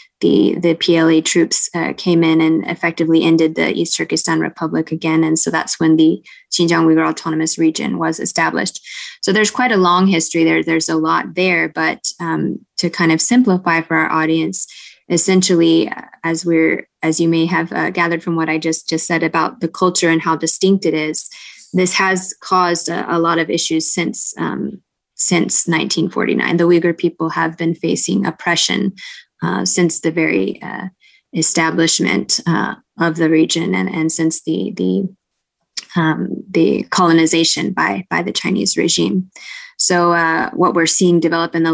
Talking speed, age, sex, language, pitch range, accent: 170 wpm, 20-39, female, English, 160-175 Hz, American